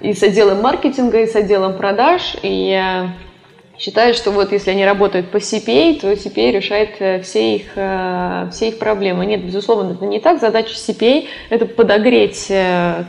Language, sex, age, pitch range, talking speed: Russian, female, 20-39, 190-225 Hz, 165 wpm